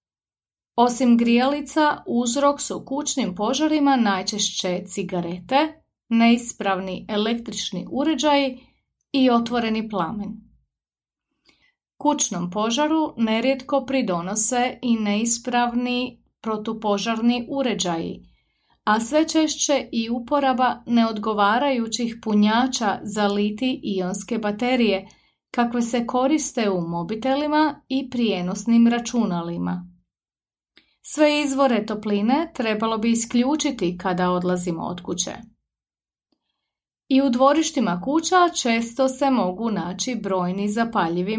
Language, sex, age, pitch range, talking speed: Croatian, female, 30-49, 200-270 Hz, 85 wpm